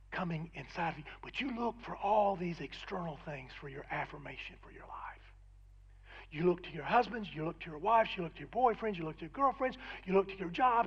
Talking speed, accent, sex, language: 235 wpm, American, male, English